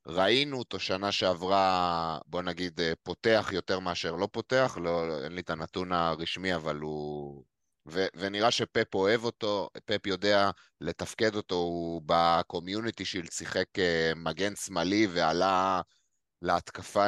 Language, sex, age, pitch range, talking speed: Hebrew, male, 30-49, 85-105 Hz, 125 wpm